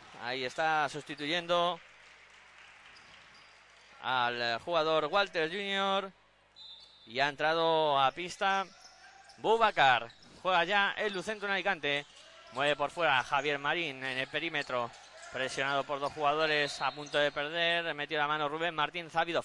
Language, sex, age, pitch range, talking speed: Spanish, male, 20-39, 145-190 Hz, 135 wpm